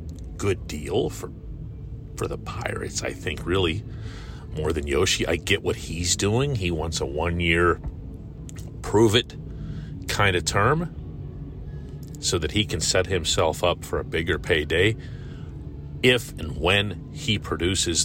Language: English